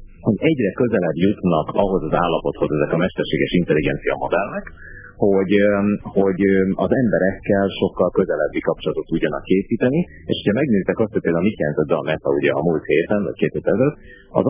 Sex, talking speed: male, 155 wpm